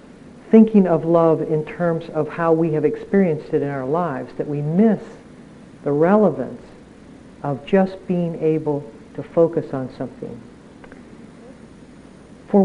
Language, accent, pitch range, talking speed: English, American, 155-215 Hz, 135 wpm